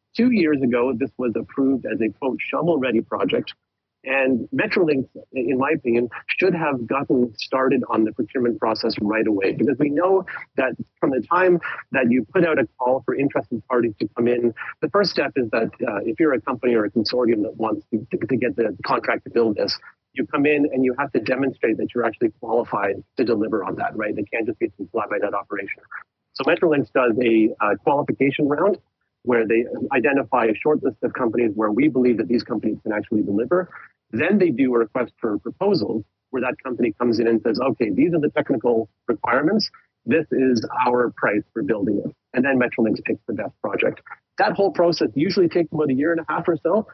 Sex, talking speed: male, 210 wpm